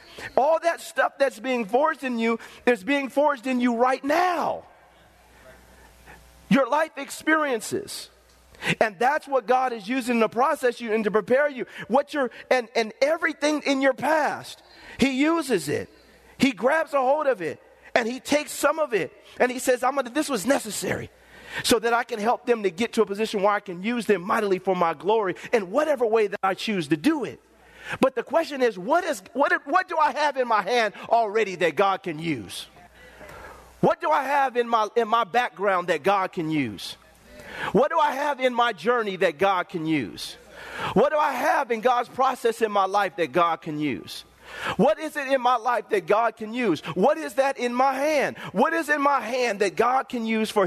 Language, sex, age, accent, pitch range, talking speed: English, male, 40-59, American, 220-285 Hz, 205 wpm